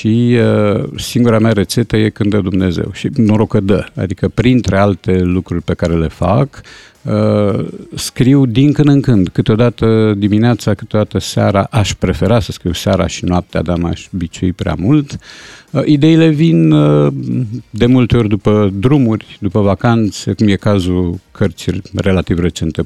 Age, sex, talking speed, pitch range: 50-69, male, 160 wpm, 90-120 Hz